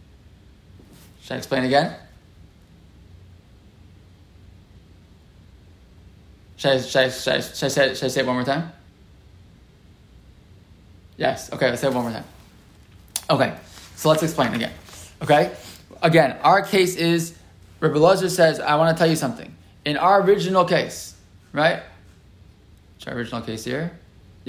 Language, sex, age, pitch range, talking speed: English, male, 20-39, 100-165 Hz, 120 wpm